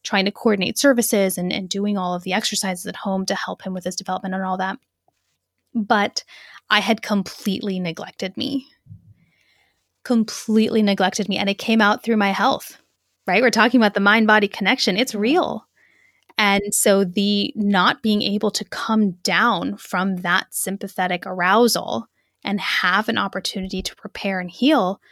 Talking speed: 160 wpm